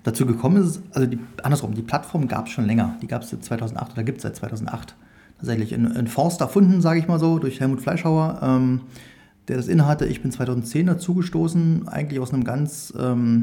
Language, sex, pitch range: German, male, 120-155 Hz